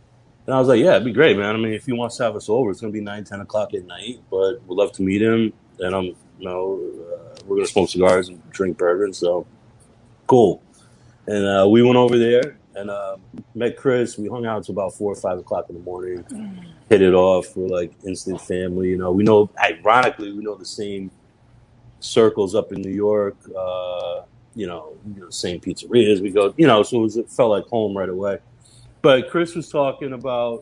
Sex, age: male, 30-49